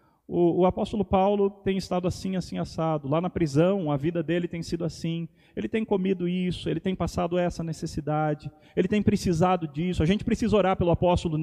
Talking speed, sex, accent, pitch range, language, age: 195 wpm, male, Brazilian, 135-180 Hz, Portuguese, 40-59